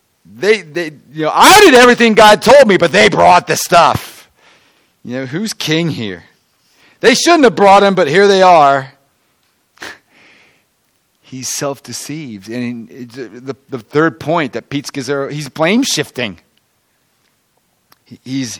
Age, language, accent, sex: 40-59, English, American, male